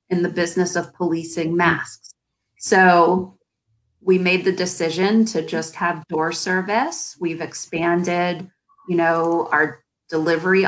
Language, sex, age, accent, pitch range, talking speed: English, female, 30-49, American, 165-200 Hz, 125 wpm